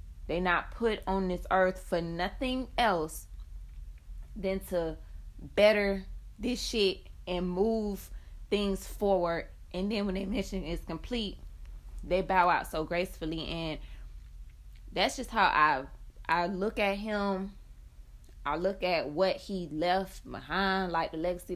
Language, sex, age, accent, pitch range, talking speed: English, female, 20-39, American, 155-205 Hz, 135 wpm